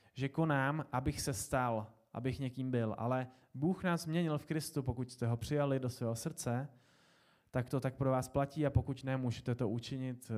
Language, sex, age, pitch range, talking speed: Czech, male, 20-39, 125-155 Hz, 190 wpm